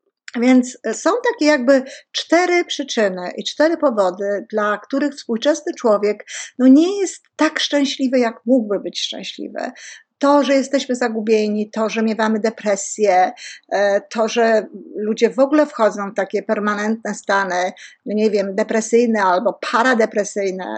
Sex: female